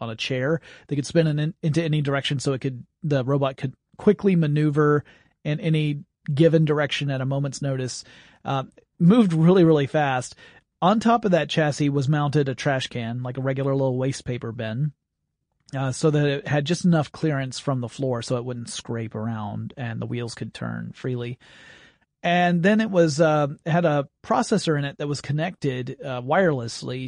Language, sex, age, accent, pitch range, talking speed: English, male, 40-59, American, 130-170 Hz, 190 wpm